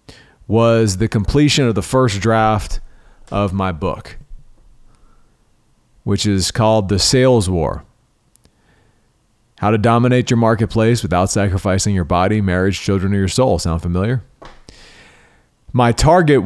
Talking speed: 125 wpm